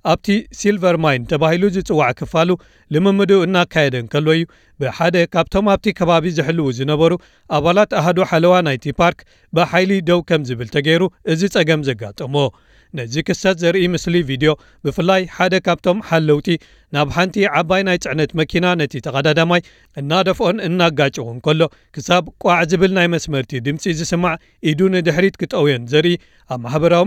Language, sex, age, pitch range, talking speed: Amharic, male, 40-59, 150-180 Hz, 120 wpm